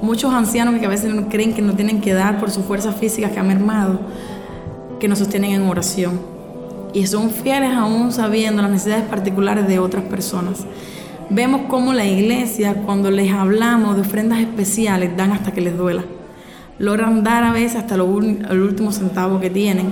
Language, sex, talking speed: Spanish, female, 185 wpm